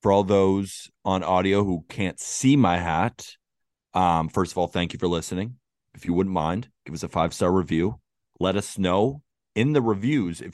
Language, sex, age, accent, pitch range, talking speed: English, male, 30-49, American, 85-110 Hz, 195 wpm